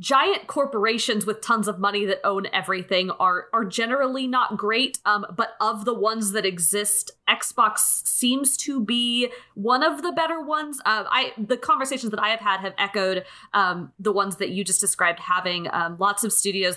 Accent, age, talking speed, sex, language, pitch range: American, 20-39, 185 wpm, female, English, 200-270 Hz